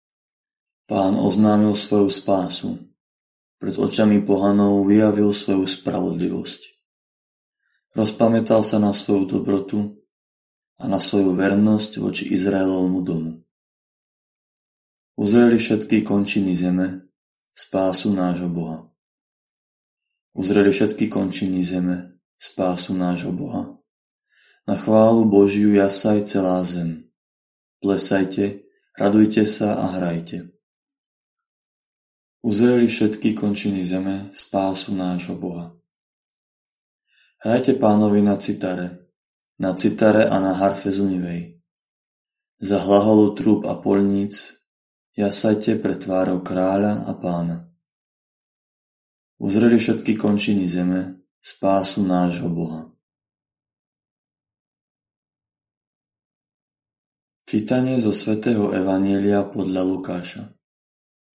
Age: 20-39